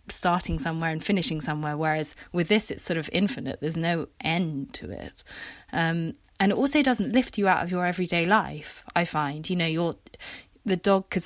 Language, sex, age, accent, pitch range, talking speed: English, female, 20-39, British, 160-190 Hz, 195 wpm